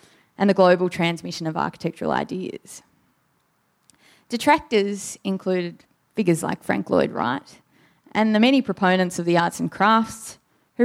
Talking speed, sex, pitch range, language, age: 135 wpm, female, 170-225 Hz, English, 20-39